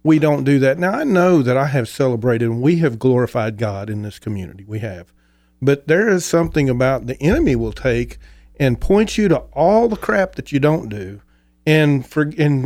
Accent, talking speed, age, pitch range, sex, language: American, 210 wpm, 40-59, 115-150 Hz, male, English